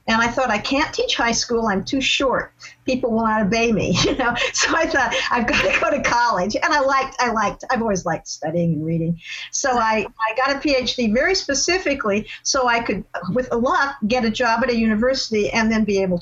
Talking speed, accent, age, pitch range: 230 wpm, American, 50-69, 200-265 Hz